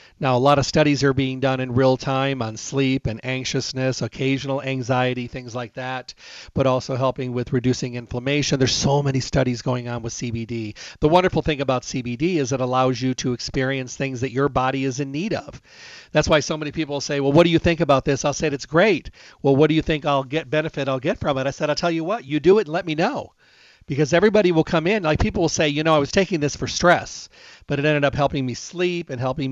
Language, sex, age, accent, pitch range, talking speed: English, male, 40-59, American, 130-155 Hz, 245 wpm